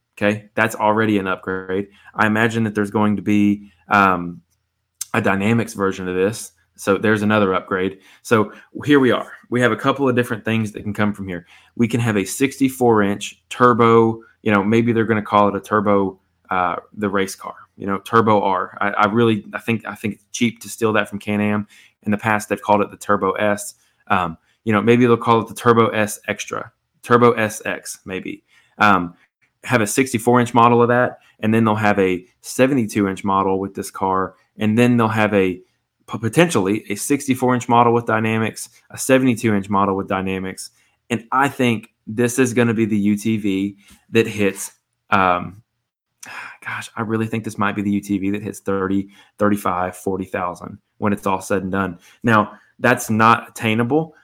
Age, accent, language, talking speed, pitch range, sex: 20-39, American, English, 190 wpm, 100-115 Hz, male